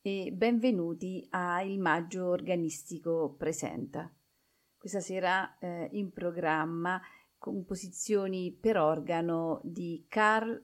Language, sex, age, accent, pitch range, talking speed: Italian, female, 40-59, native, 160-190 Hz, 95 wpm